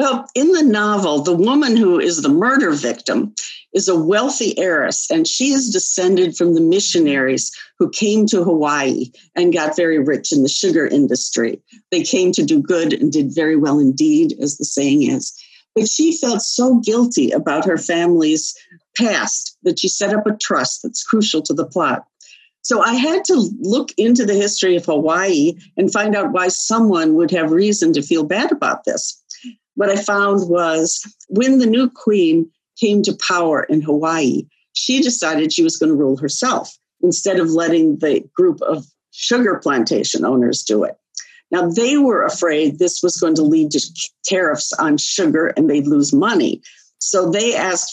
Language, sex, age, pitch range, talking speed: English, female, 50-69, 165-275 Hz, 180 wpm